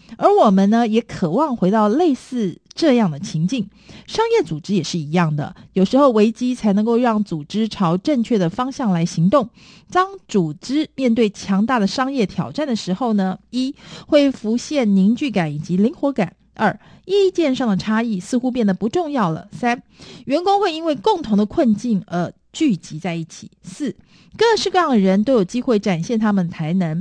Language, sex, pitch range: Chinese, female, 195-270 Hz